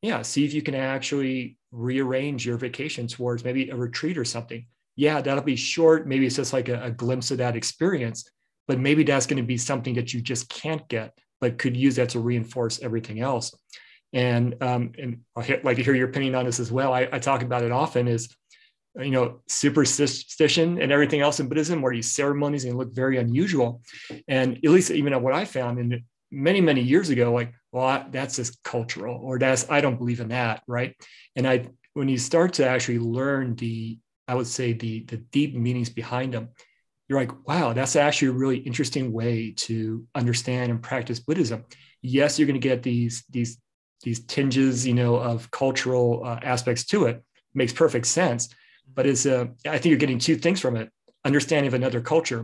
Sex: male